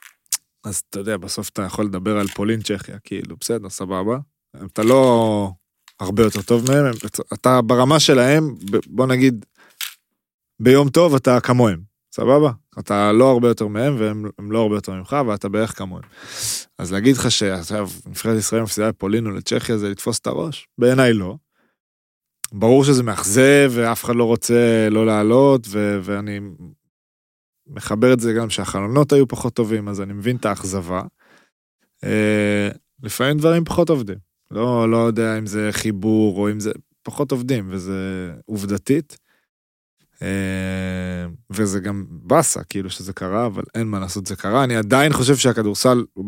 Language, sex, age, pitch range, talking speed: Hebrew, male, 20-39, 100-120 Hz, 140 wpm